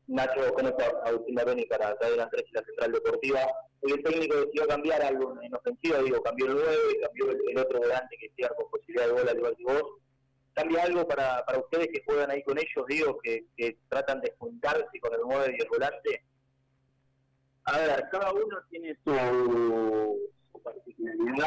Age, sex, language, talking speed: 30-49, male, Spanish, 195 wpm